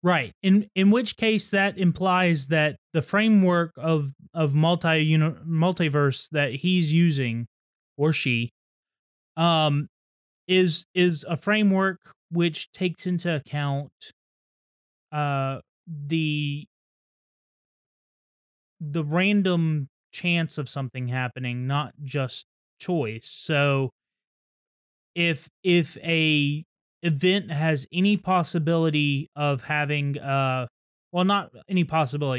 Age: 30-49